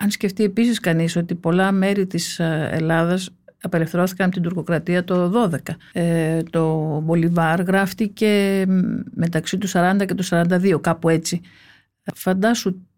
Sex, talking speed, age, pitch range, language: female, 130 wpm, 50-69, 170-205 Hz, Greek